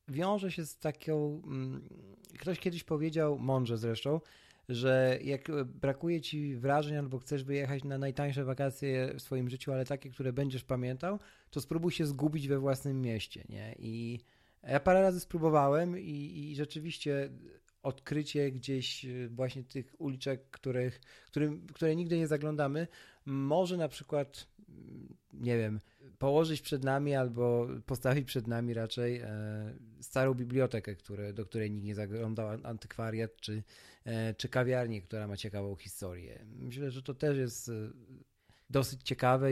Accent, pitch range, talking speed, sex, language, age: native, 110-140 Hz, 135 wpm, male, Polish, 40-59